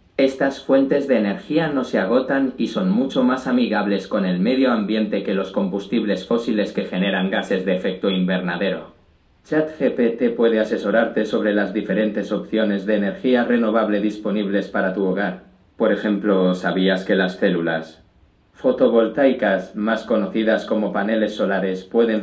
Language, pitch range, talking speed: Spanish, 95-150 Hz, 145 wpm